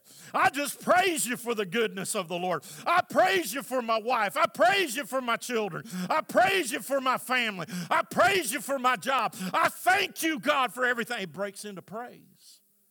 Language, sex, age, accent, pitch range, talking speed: English, male, 50-69, American, 130-200 Hz, 205 wpm